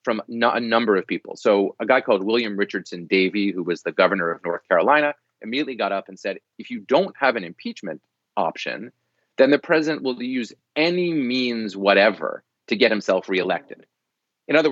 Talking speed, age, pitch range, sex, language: 185 wpm, 30-49, 105-155 Hz, male, English